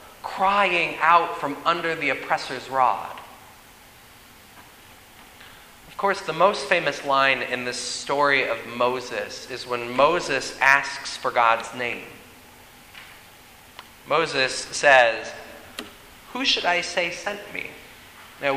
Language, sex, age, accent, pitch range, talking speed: English, male, 30-49, American, 130-165 Hz, 110 wpm